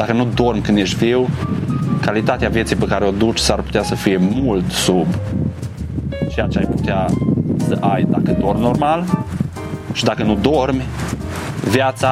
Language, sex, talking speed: Romanian, male, 160 wpm